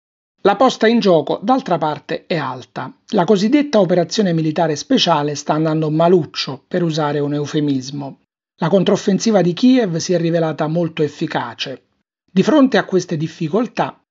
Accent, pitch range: native, 160-210 Hz